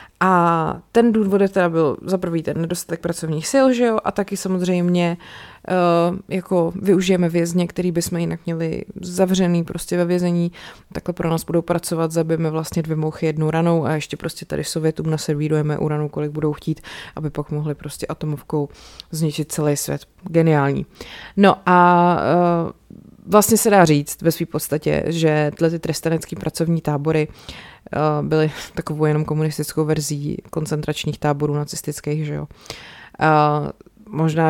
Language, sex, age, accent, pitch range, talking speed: Czech, female, 20-39, native, 155-180 Hz, 150 wpm